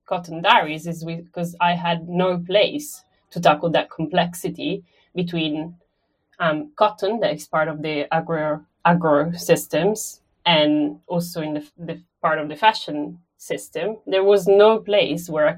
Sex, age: female, 30-49